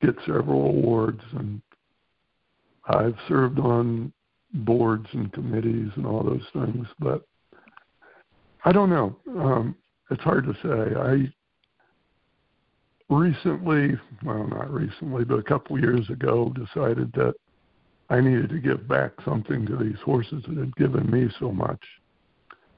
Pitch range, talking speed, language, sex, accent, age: 110-135 Hz, 135 wpm, English, male, American, 60-79